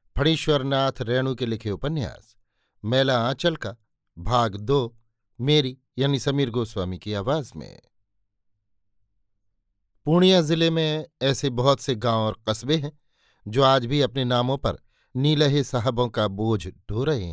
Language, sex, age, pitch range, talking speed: Hindi, male, 50-69, 110-140 Hz, 135 wpm